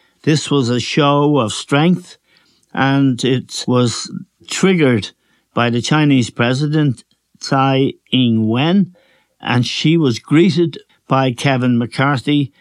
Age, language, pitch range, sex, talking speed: 60-79, English, 115-140 Hz, male, 110 wpm